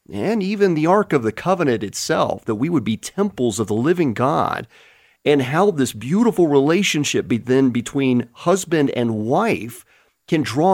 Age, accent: 40-59, American